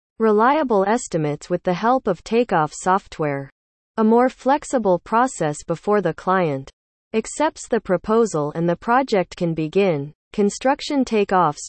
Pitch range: 160-225 Hz